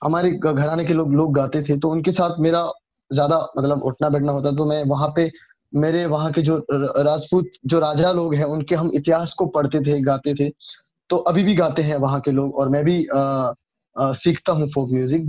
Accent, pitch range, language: Indian, 140-175 Hz, English